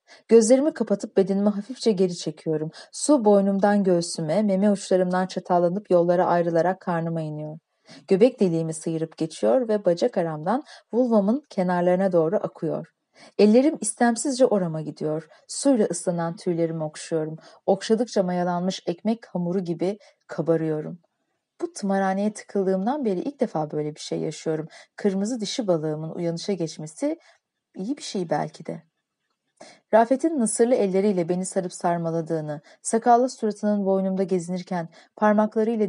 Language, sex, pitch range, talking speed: Turkish, female, 170-215 Hz, 120 wpm